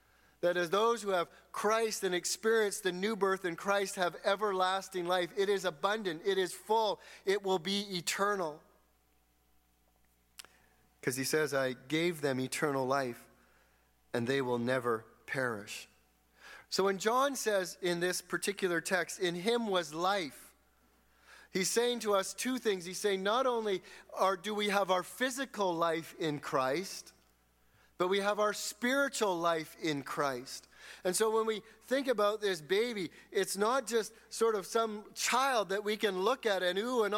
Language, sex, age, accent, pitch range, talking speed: English, male, 40-59, American, 145-210 Hz, 165 wpm